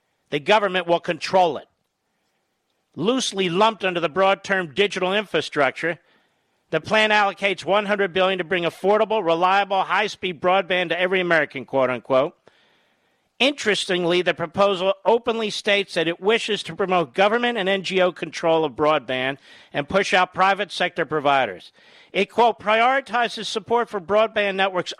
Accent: American